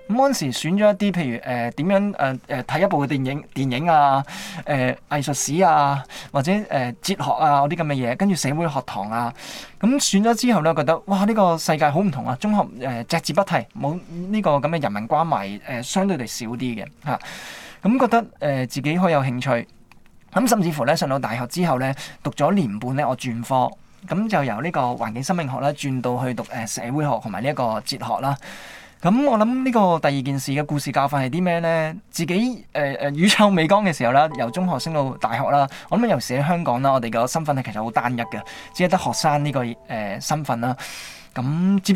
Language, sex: Chinese, male